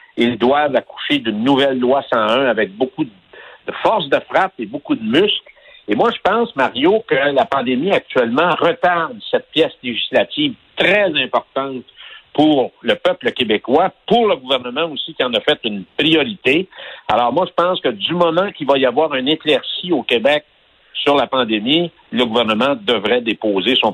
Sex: male